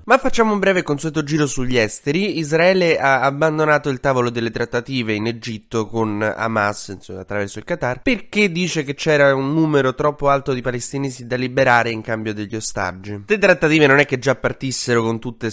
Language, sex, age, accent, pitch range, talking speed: Italian, male, 20-39, native, 105-140 Hz, 185 wpm